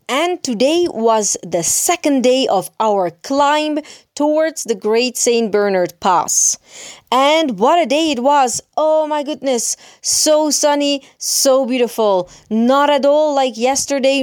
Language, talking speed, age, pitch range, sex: Italian, 140 wpm, 30-49, 200-280 Hz, female